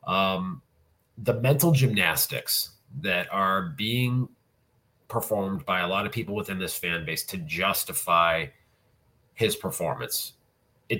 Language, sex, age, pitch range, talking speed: English, male, 30-49, 100-130 Hz, 120 wpm